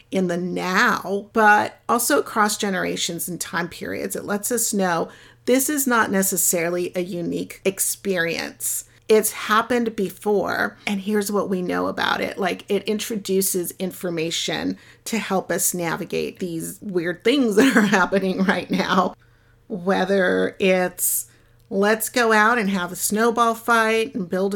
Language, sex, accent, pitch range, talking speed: English, female, American, 175-215 Hz, 145 wpm